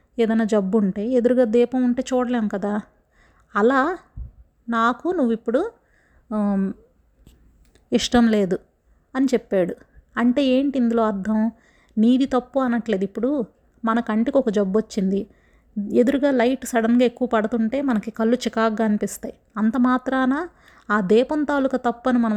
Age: 30-49